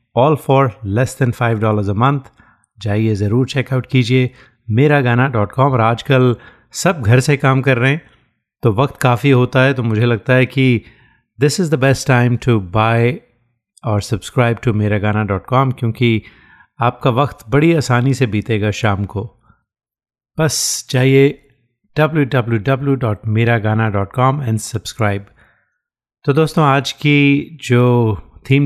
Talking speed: 145 wpm